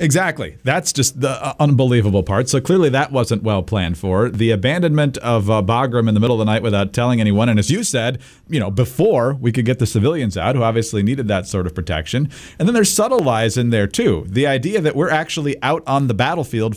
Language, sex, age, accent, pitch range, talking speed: English, male, 40-59, American, 100-130 Hz, 230 wpm